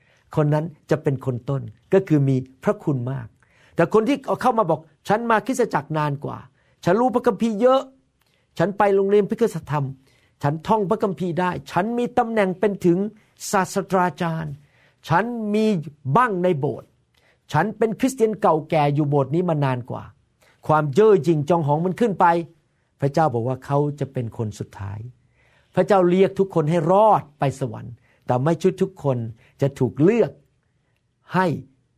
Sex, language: male, Thai